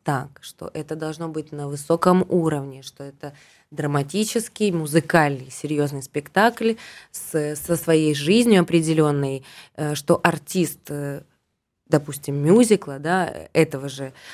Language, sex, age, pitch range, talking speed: Russian, female, 20-39, 150-185 Hz, 100 wpm